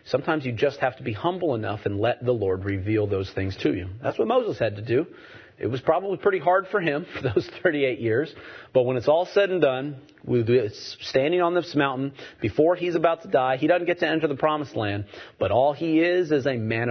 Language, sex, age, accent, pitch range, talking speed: English, male, 40-59, American, 120-155 Hz, 235 wpm